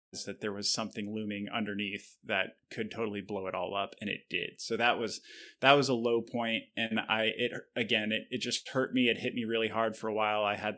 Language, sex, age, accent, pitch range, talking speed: English, male, 20-39, American, 105-125 Hz, 240 wpm